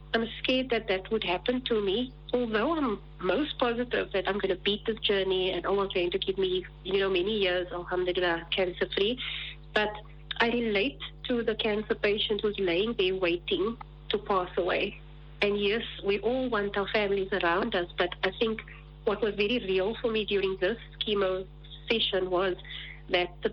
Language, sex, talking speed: English, female, 180 wpm